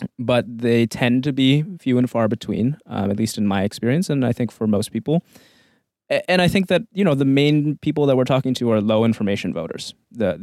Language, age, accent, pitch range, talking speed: English, 20-39, American, 110-135 Hz, 225 wpm